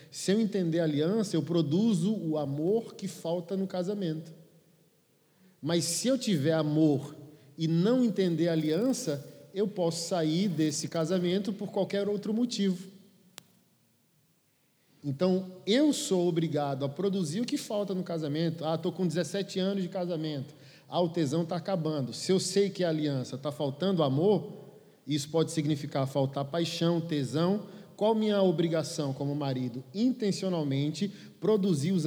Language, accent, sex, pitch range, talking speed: Portuguese, Brazilian, male, 155-200 Hz, 150 wpm